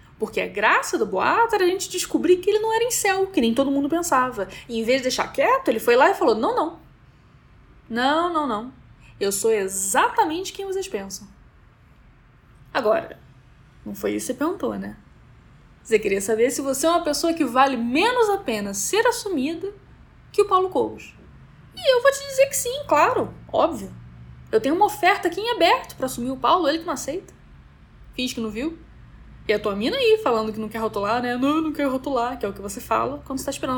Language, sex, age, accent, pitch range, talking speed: Portuguese, female, 10-29, Brazilian, 225-370 Hz, 215 wpm